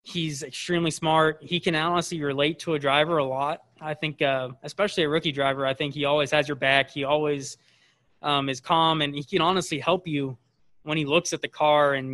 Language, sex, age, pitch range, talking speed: English, male, 20-39, 140-160 Hz, 215 wpm